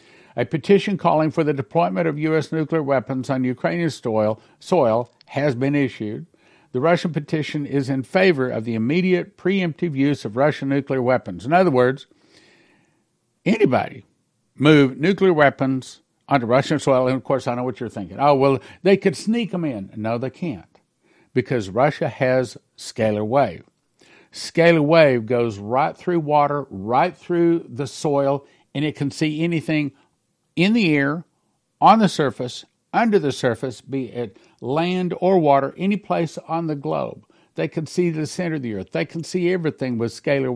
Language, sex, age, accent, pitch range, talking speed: English, male, 60-79, American, 130-165 Hz, 165 wpm